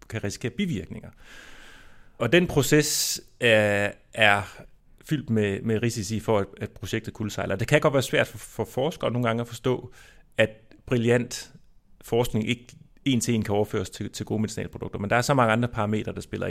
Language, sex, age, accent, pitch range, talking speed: Danish, male, 30-49, native, 100-120 Hz, 185 wpm